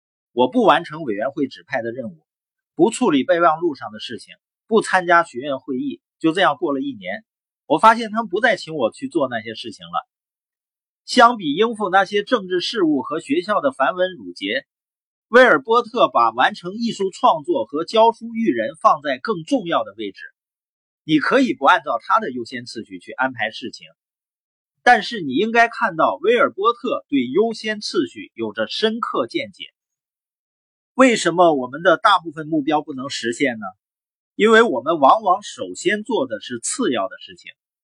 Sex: male